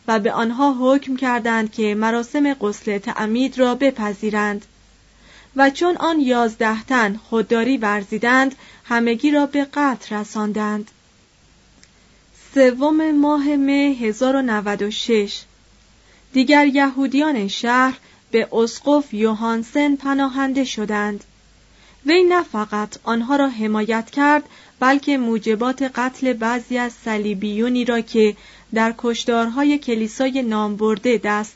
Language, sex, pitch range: Persian, female, 215-270 Hz